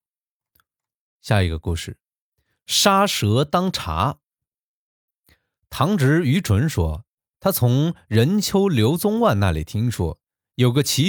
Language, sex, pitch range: Chinese, male, 90-130 Hz